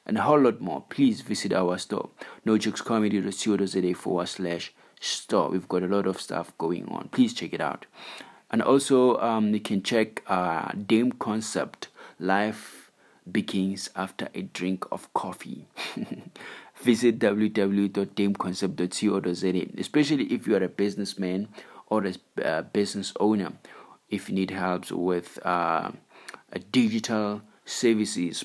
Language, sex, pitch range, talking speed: English, male, 95-115 Hz, 130 wpm